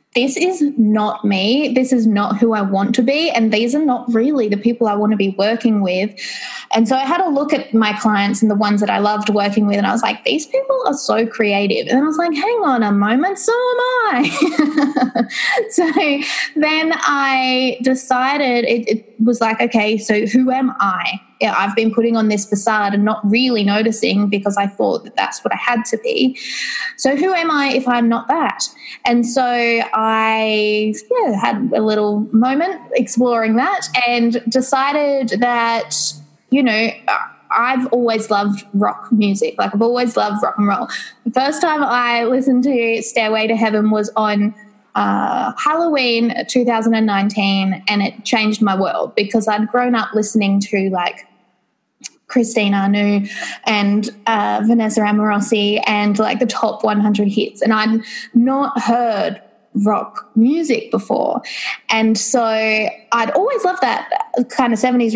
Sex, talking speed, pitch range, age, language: female, 170 wpm, 215-260 Hz, 20-39, English